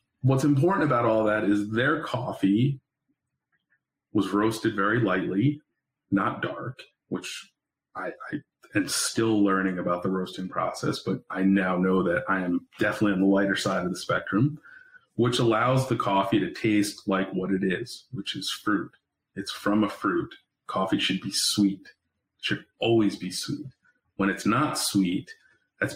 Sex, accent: male, American